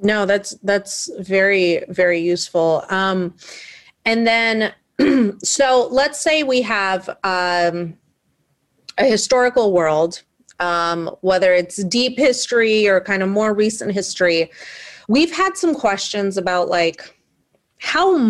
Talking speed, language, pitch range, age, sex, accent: 120 wpm, English, 180-250 Hz, 30-49, female, American